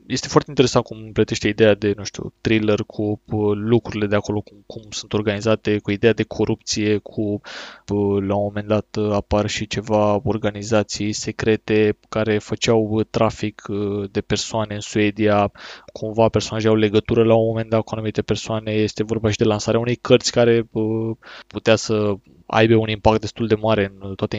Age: 20-39